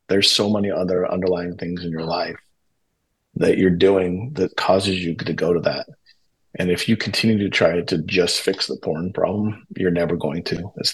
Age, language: 30-49, English